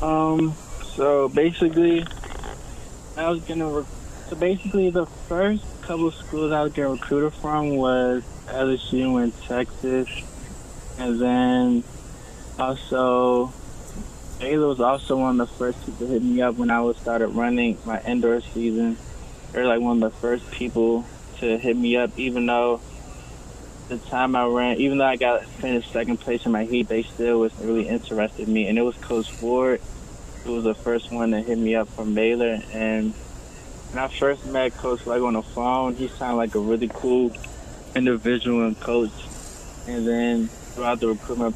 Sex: male